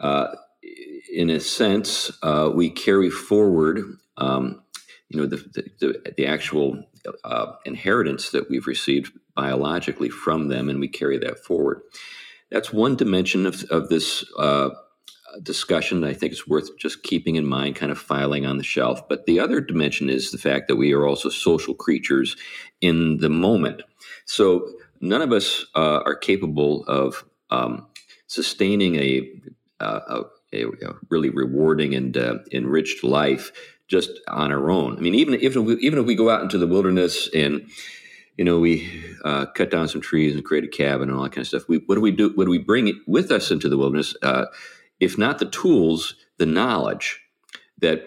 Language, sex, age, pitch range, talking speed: English, male, 50-69, 70-90 Hz, 185 wpm